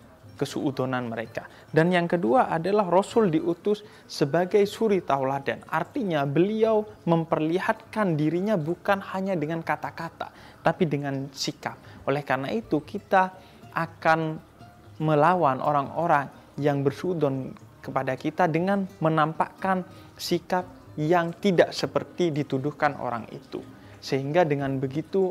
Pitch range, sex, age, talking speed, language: 130-165 Hz, male, 20-39, 105 wpm, Indonesian